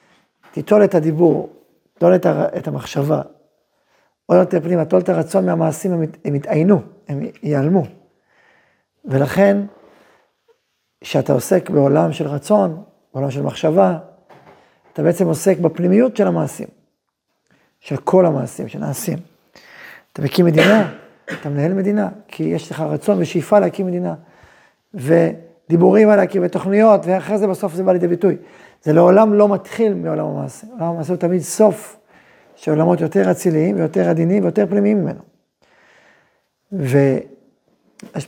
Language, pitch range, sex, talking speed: Hebrew, 155-200 Hz, male, 125 wpm